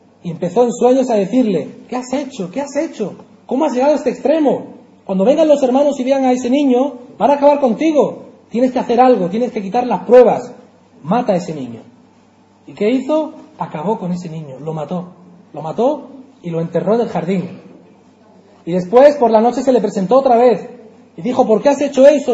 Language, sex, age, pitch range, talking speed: Spanish, male, 30-49, 180-255 Hz, 210 wpm